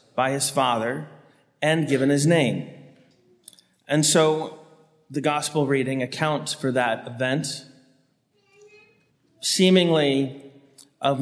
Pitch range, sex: 135-165 Hz, male